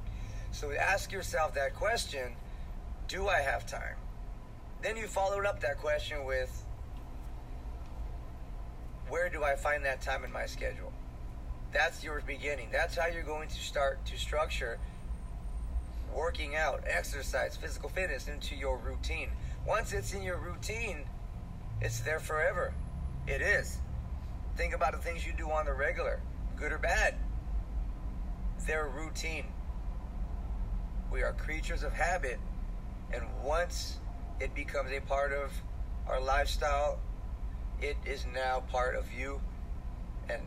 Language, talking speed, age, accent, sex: English, 130 wpm, 30-49, American, male